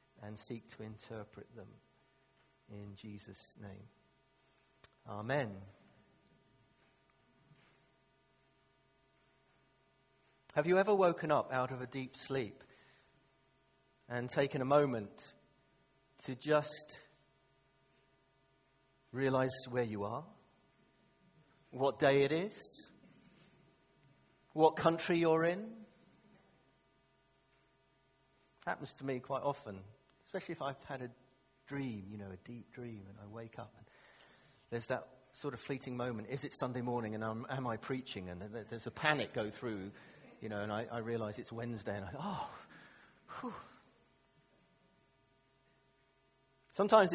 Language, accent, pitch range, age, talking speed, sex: English, British, 110-140 Hz, 50-69, 115 wpm, male